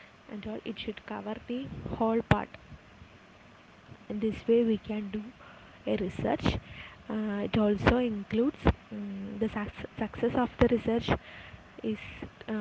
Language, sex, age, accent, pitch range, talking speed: English, female, 20-39, Indian, 210-230 Hz, 125 wpm